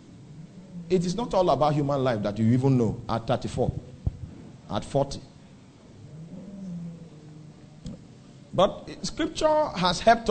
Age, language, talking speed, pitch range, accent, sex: 40-59, English, 110 wpm, 125-170 Hz, Nigerian, male